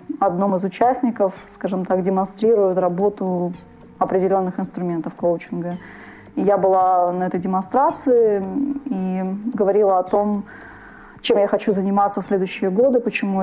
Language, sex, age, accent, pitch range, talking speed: Ukrainian, female, 20-39, native, 185-210 Hz, 125 wpm